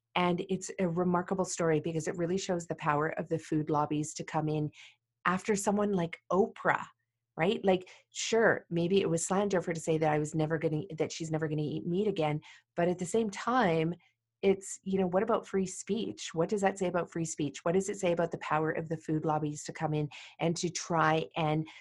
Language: English